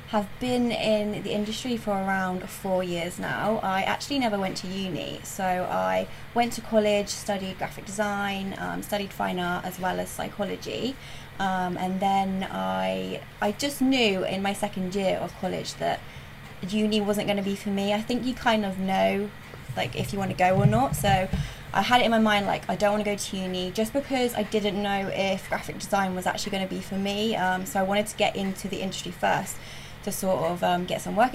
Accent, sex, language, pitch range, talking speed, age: British, female, English, 180-215 Hz, 210 wpm, 20-39